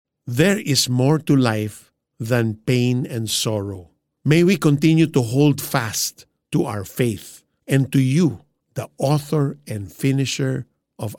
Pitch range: 110-145 Hz